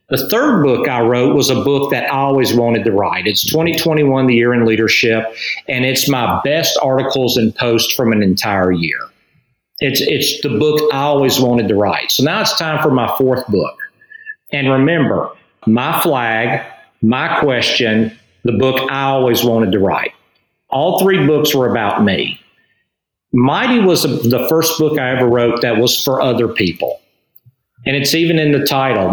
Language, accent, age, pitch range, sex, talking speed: English, American, 50-69, 120-145 Hz, male, 175 wpm